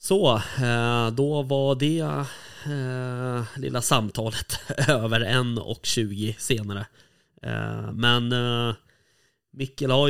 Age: 20-39